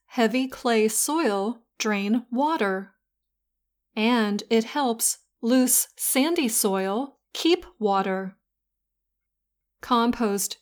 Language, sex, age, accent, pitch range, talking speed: English, female, 30-49, American, 205-265 Hz, 80 wpm